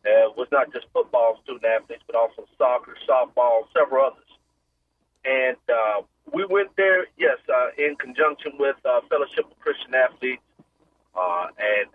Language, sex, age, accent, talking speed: English, male, 40-59, American, 150 wpm